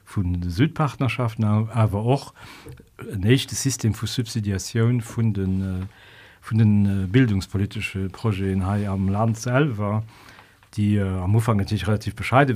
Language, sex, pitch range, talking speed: German, male, 95-115 Hz, 130 wpm